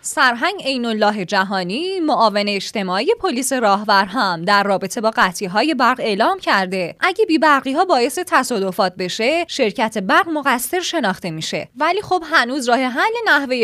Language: Persian